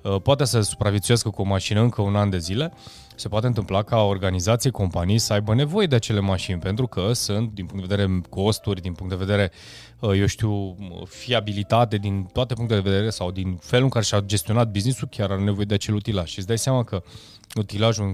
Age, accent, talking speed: 20-39, native, 210 wpm